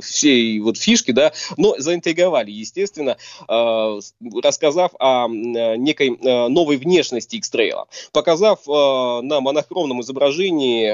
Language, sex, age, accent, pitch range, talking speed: Russian, male, 20-39, native, 130-175 Hz, 110 wpm